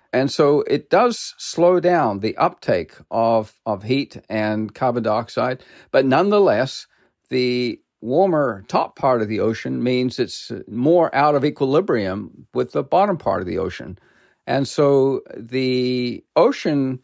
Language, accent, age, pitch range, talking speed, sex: English, American, 50-69, 125-155 Hz, 140 wpm, male